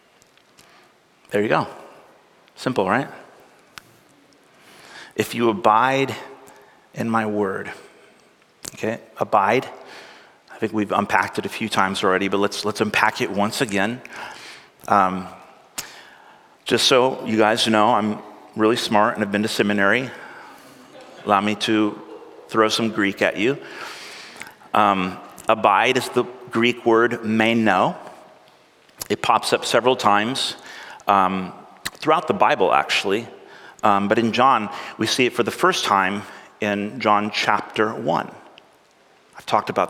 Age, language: 30-49, English